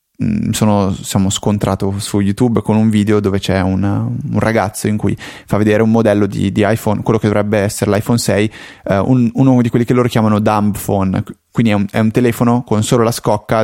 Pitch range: 100-120 Hz